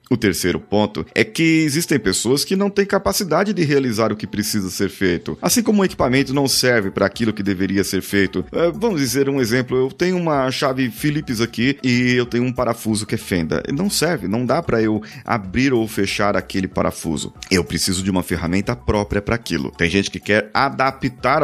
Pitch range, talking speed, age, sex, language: 105-140 Hz, 200 wpm, 30-49, male, Portuguese